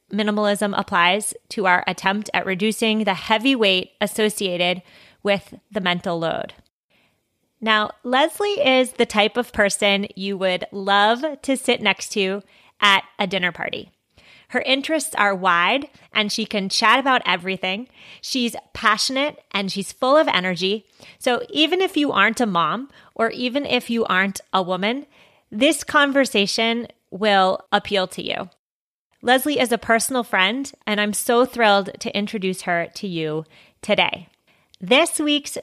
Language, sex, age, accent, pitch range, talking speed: English, female, 30-49, American, 195-245 Hz, 145 wpm